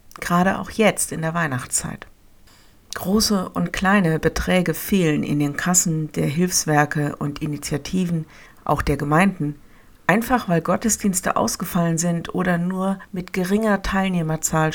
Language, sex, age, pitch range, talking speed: German, female, 60-79, 155-185 Hz, 125 wpm